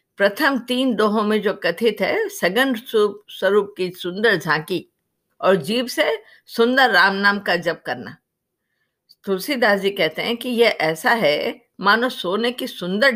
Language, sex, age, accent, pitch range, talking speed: Hindi, female, 50-69, native, 190-245 Hz, 150 wpm